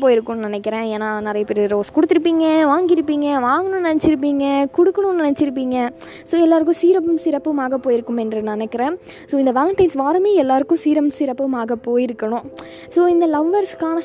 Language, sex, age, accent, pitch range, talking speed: Tamil, female, 20-39, native, 235-325 Hz, 130 wpm